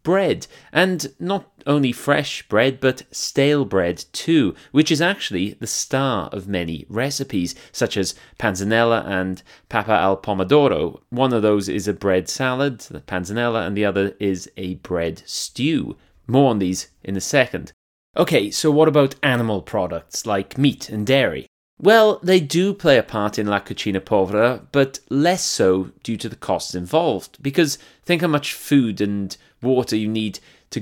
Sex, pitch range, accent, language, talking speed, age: male, 100-140 Hz, British, English, 165 wpm, 30-49